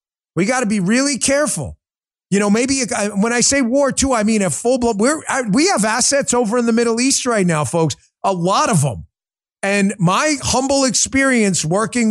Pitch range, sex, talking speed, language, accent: 195-250 Hz, male, 190 wpm, English, American